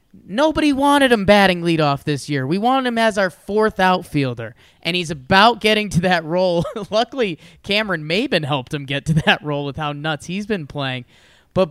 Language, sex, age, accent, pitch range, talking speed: English, male, 20-39, American, 155-210 Hz, 190 wpm